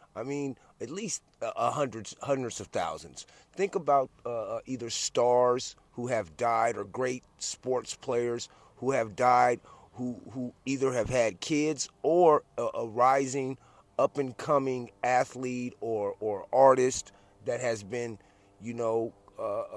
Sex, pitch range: male, 100-140 Hz